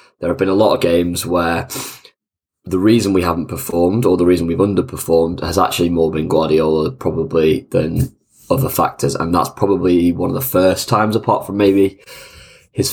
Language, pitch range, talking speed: English, 85-100 Hz, 180 wpm